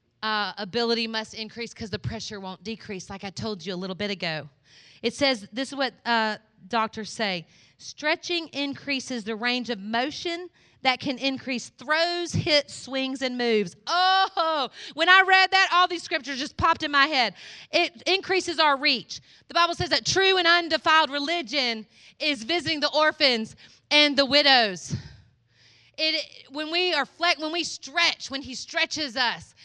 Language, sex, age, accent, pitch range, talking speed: English, female, 30-49, American, 230-320 Hz, 170 wpm